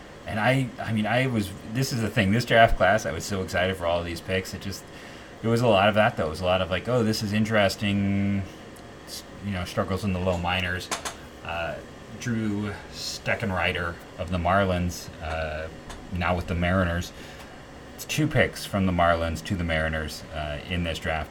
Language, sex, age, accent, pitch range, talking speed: English, male, 30-49, American, 85-110 Hz, 205 wpm